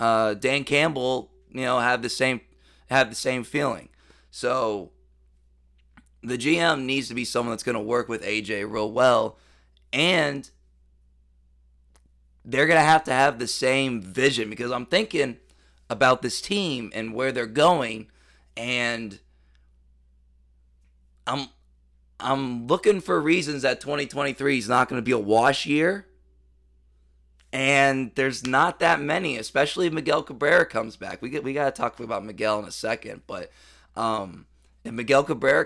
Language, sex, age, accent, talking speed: English, male, 20-39, American, 150 wpm